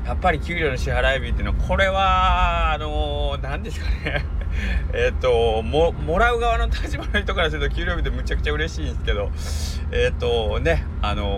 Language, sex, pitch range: Japanese, male, 70-90 Hz